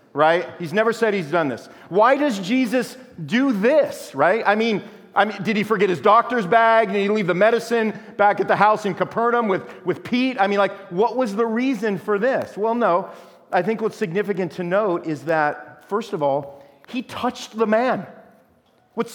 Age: 40-59